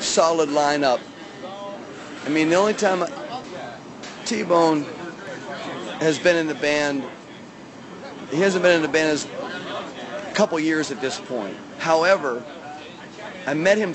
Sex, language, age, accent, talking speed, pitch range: male, English, 40-59, American, 135 wpm, 140-175 Hz